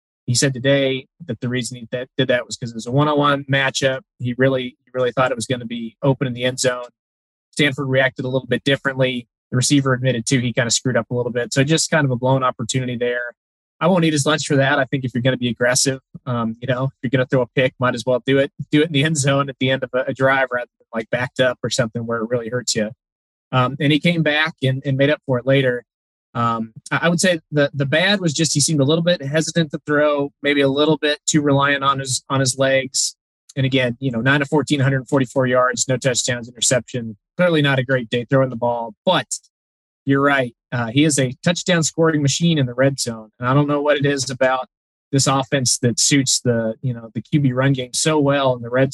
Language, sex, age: English, male, 20-39